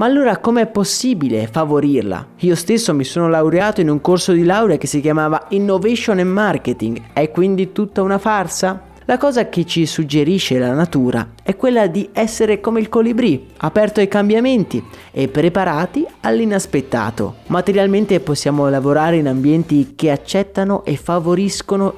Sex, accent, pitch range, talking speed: male, native, 145-200 Hz, 155 wpm